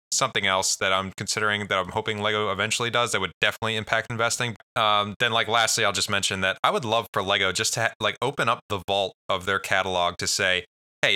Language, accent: English, American